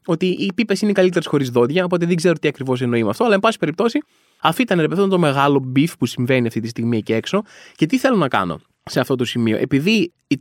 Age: 20-39